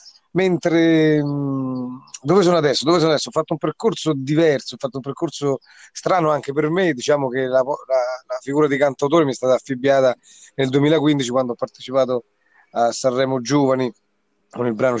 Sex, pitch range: male, 115-135 Hz